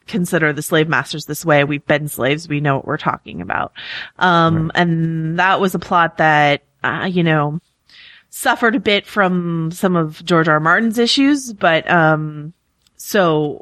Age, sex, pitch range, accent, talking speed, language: 30-49, female, 160-200 Hz, American, 170 wpm, English